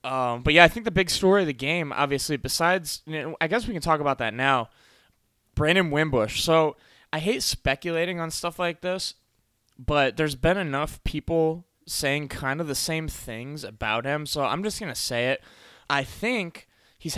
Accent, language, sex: American, English, male